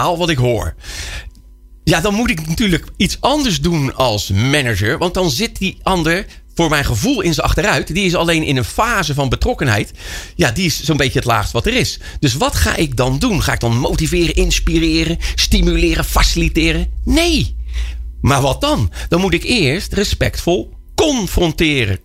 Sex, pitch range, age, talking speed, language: male, 105-175 Hz, 50-69, 175 wpm, Dutch